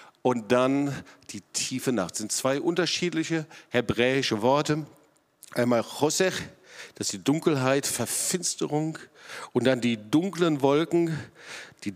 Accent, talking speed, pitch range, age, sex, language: German, 120 wpm, 135-205 Hz, 50-69, male, German